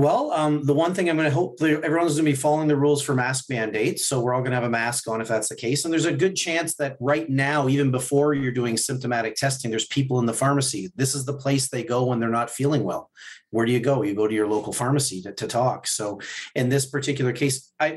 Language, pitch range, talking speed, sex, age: English, 125-145 Hz, 270 wpm, male, 40-59